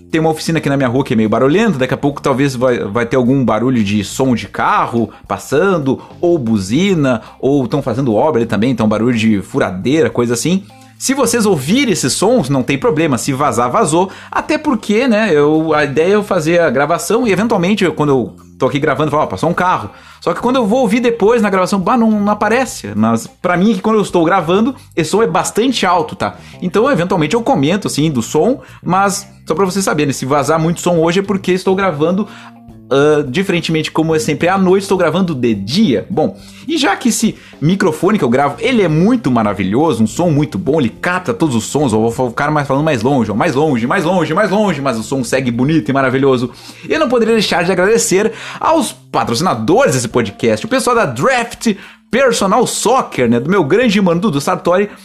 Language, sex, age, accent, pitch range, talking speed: Portuguese, male, 30-49, Brazilian, 130-205 Hz, 215 wpm